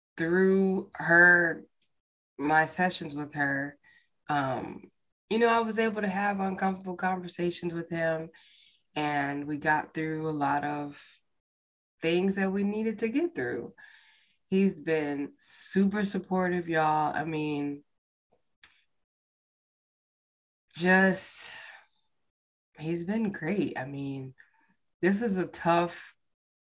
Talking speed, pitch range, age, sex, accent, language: 110 wpm, 145-185 Hz, 20-39, female, American, English